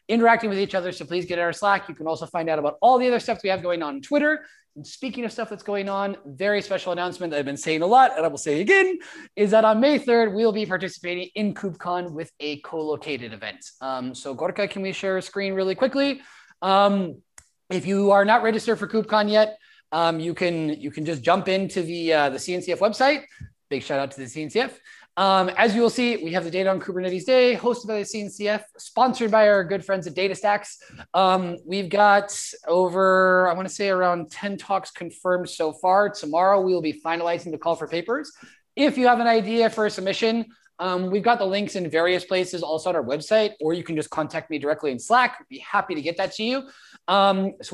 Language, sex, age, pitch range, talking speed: English, male, 20-39, 170-215 Hz, 230 wpm